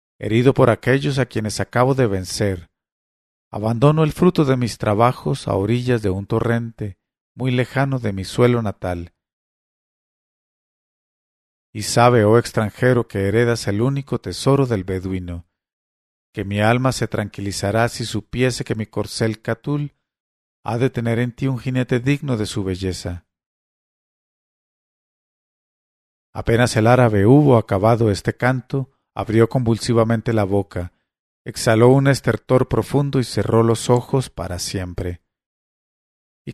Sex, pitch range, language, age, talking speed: male, 100-125 Hz, English, 40-59, 130 wpm